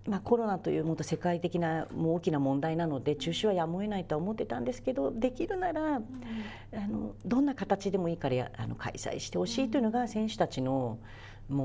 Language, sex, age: Japanese, female, 40-59